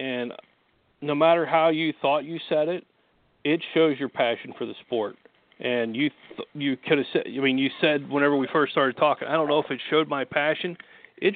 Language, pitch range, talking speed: English, 135-160 Hz, 215 wpm